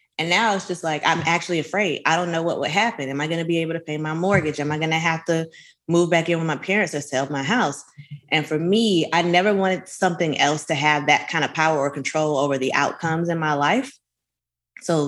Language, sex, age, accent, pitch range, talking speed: English, female, 20-39, American, 140-195 Hz, 250 wpm